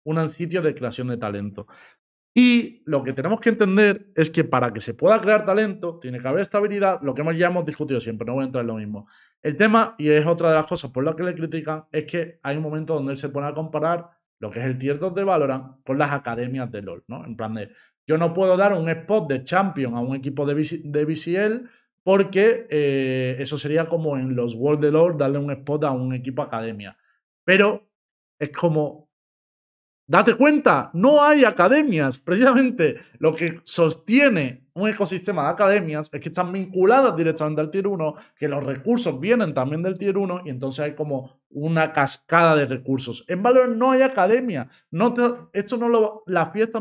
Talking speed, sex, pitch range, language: 210 wpm, male, 140-195 Hz, Spanish